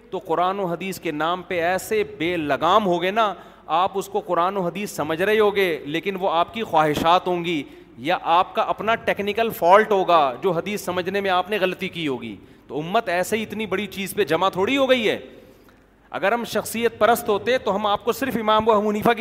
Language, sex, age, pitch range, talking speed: Urdu, male, 40-59, 180-225 Hz, 220 wpm